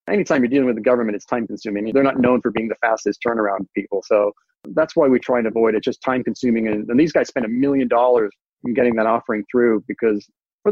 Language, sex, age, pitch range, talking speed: English, male, 30-49, 120-155 Hz, 240 wpm